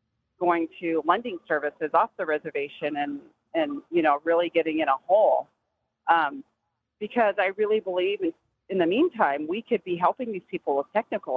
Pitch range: 160-255 Hz